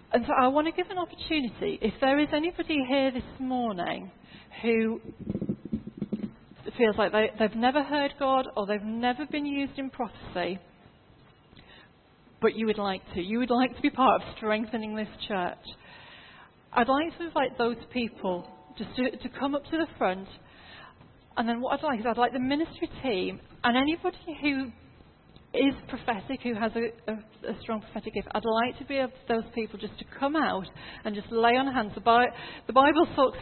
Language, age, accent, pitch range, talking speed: English, 40-59, British, 205-265 Hz, 180 wpm